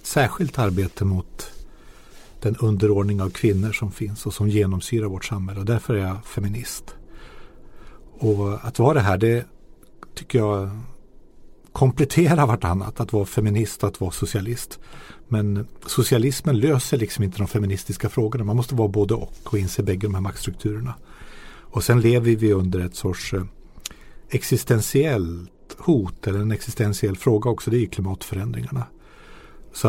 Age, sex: 50-69, male